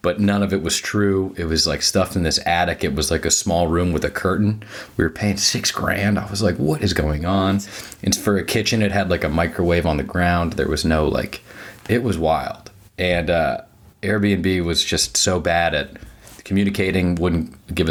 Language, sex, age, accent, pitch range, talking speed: English, male, 30-49, American, 85-105 Hz, 215 wpm